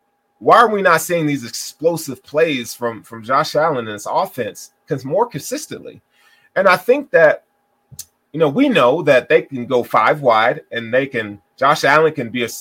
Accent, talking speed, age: American, 195 wpm, 30-49